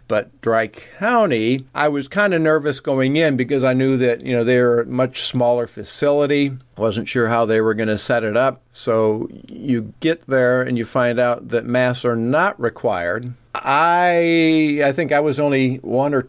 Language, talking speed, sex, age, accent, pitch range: English, 195 wpm, male, 50-69, American, 110-135 Hz